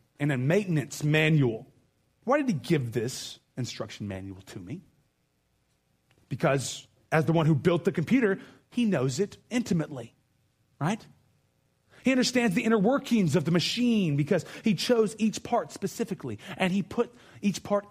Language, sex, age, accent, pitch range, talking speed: English, male, 30-49, American, 125-190 Hz, 150 wpm